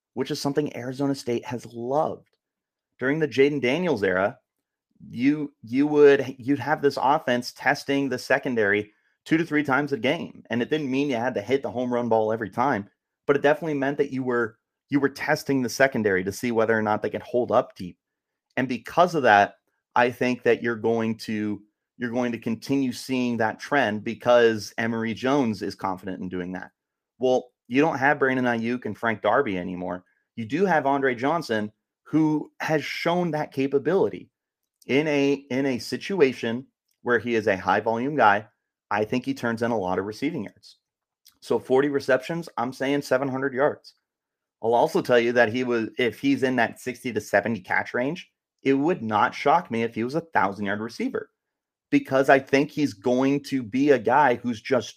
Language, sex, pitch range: English, male, 115-140 Hz